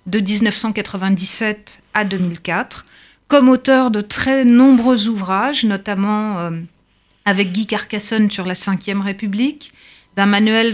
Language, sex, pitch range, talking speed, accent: French, female, 195-245 Hz, 110 wpm, French